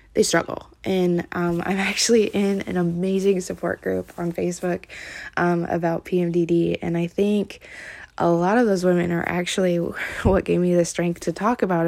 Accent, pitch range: American, 170-195 Hz